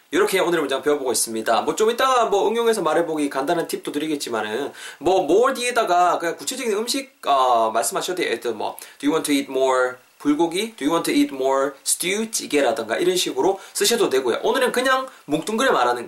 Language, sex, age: Korean, male, 20-39